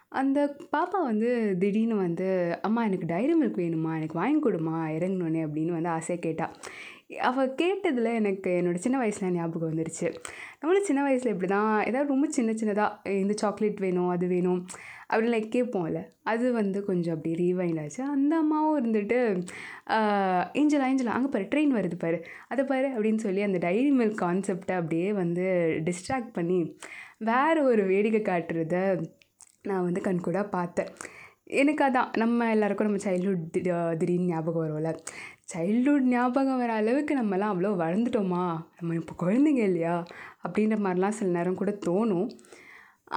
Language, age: Tamil, 20-39